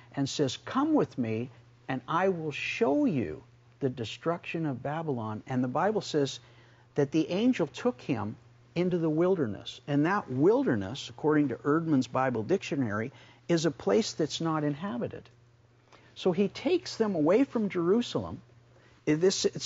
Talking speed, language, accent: 145 wpm, English, American